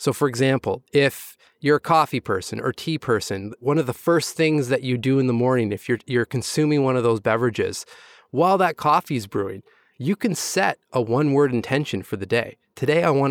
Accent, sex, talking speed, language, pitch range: American, male, 210 wpm, English, 125-170 Hz